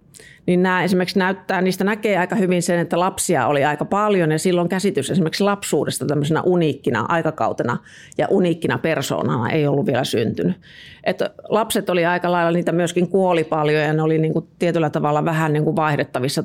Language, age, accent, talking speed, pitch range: Finnish, 30-49, native, 180 wpm, 145-180 Hz